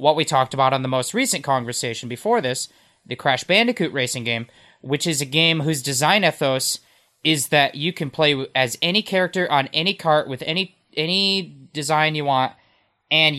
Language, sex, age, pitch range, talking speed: English, male, 20-39, 130-170 Hz, 185 wpm